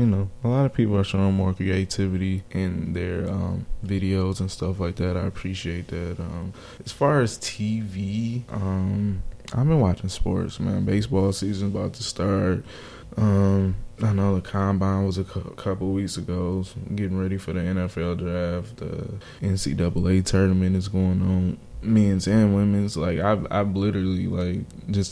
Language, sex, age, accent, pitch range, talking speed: English, male, 20-39, American, 95-105 Hz, 160 wpm